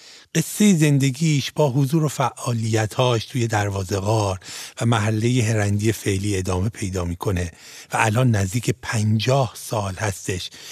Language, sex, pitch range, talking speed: Persian, male, 100-130 Hz, 125 wpm